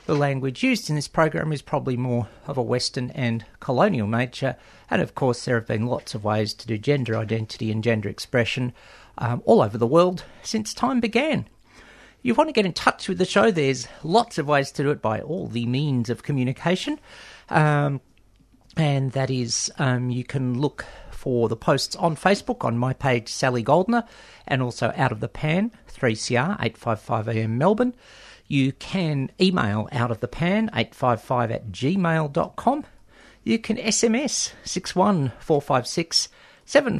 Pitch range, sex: 120-170 Hz, male